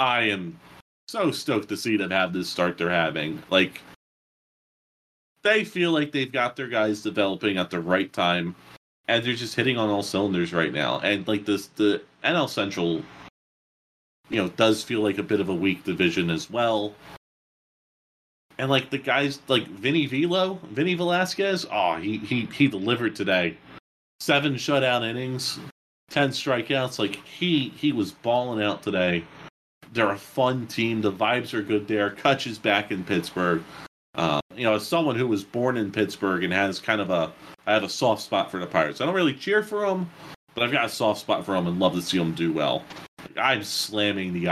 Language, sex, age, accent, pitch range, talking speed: English, male, 30-49, American, 90-130 Hz, 190 wpm